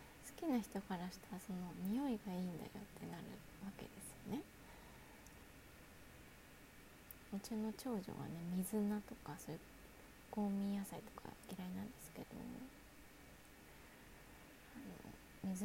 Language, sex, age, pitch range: Japanese, female, 20-39, 195-235 Hz